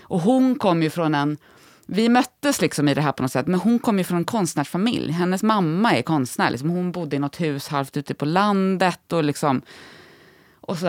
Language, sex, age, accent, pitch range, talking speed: English, female, 20-39, Swedish, 160-215 Hz, 215 wpm